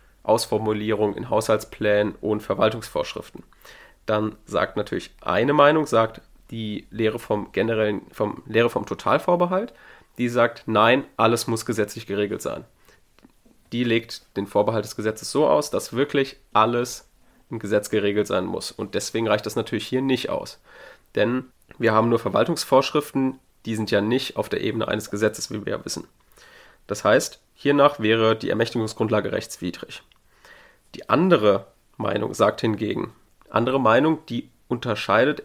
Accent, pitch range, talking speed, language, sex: German, 110-130 Hz, 145 wpm, German, male